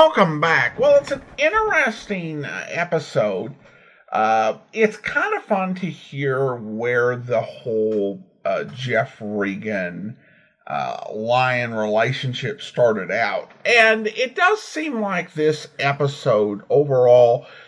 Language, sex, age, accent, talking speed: English, male, 50-69, American, 110 wpm